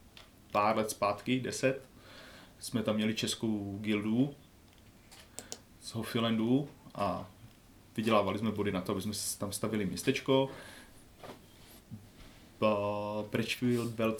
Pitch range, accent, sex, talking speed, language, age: 100-120 Hz, native, male, 95 wpm, Czech, 30-49